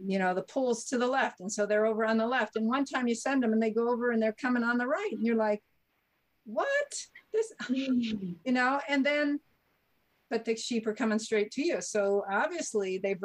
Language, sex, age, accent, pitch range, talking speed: English, female, 50-69, American, 180-230 Hz, 225 wpm